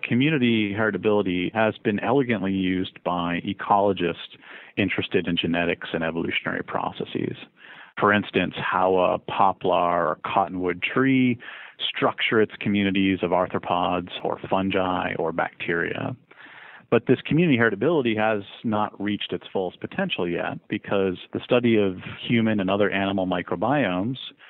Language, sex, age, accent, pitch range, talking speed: English, male, 40-59, American, 90-110 Hz, 125 wpm